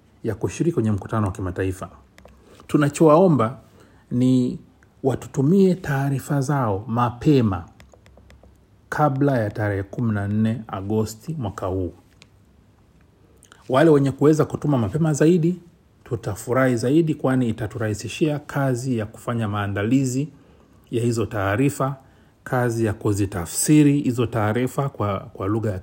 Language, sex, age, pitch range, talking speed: Swahili, male, 40-59, 100-135 Hz, 105 wpm